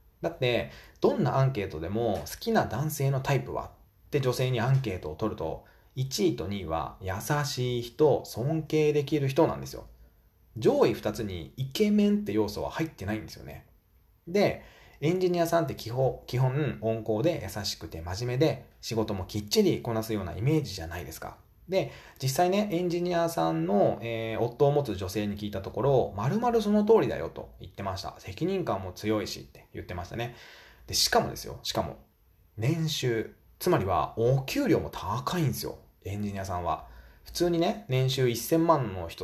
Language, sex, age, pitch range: Japanese, male, 20-39, 105-155 Hz